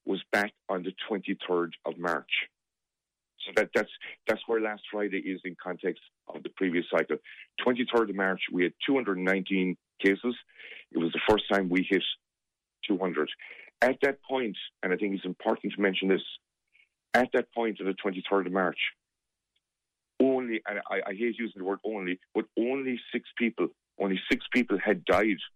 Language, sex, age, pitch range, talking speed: English, male, 50-69, 95-120 Hz, 170 wpm